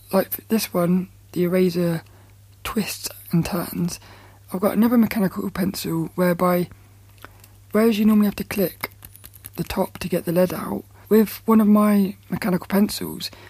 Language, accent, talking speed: English, British, 145 wpm